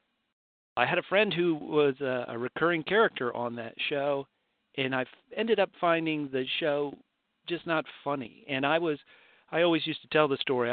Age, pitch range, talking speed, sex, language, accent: 40-59, 125-160 Hz, 185 wpm, male, English, American